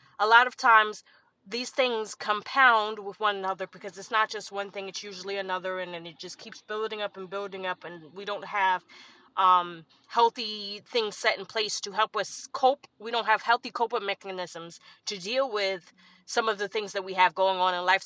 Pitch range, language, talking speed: 190-245 Hz, English, 205 wpm